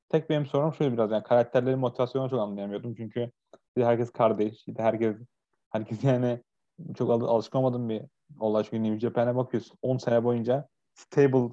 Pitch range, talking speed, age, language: 110-135 Hz, 145 wpm, 30-49, Turkish